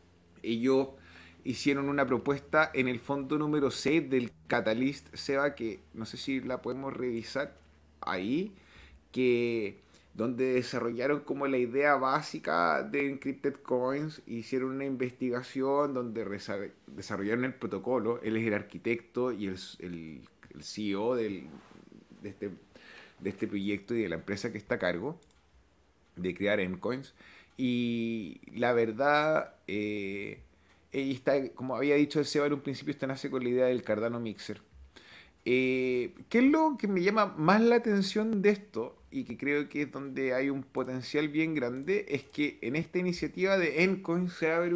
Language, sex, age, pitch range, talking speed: Spanish, male, 30-49, 115-150 Hz, 160 wpm